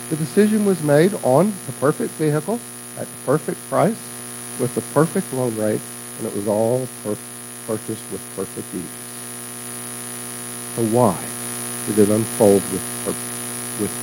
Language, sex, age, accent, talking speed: English, male, 60-79, American, 145 wpm